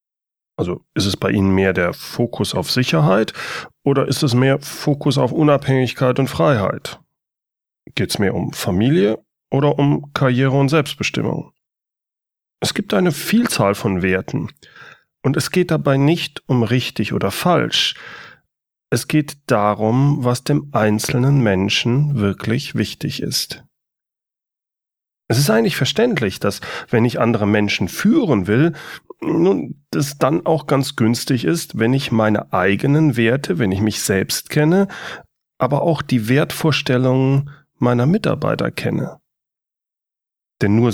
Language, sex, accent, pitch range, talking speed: German, male, German, 115-145 Hz, 135 wpm